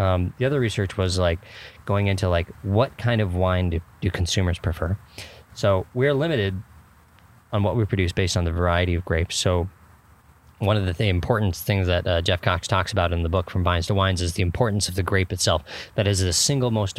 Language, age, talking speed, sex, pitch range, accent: English, 20-39, 215 wpm, male, 90-105 Hz, American